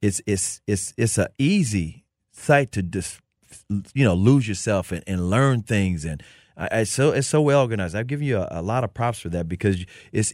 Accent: American